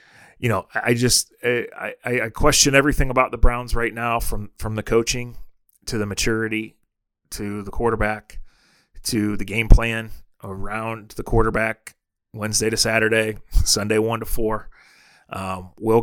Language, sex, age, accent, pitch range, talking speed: English, male, 30-49, American, 105-120 Hz, 155 wpm